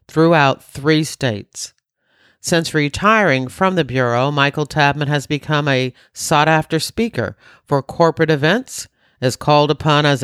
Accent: American